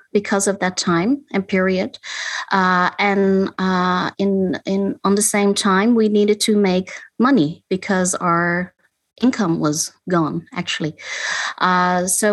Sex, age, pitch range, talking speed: female, 30-49, 185-225 Hz, 135 wpm